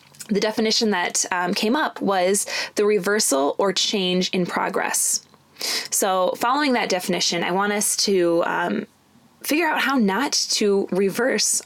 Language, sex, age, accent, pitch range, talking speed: English, female, 20-39, American, 185-235 Hz, 145 wpm